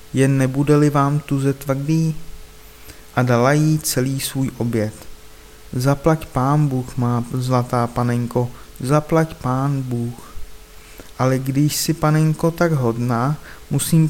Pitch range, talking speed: 125-150 Hz, 120 wpm